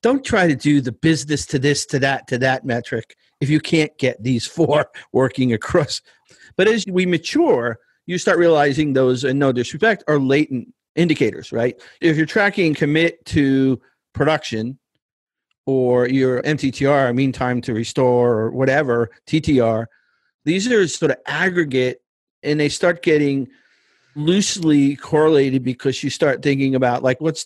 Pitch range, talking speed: 120-150 Hz, 155 wpm